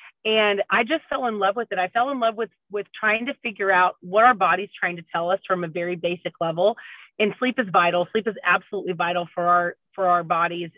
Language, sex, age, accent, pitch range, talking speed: English, female, 30-49, American, 190-230 Hz, 240 wpm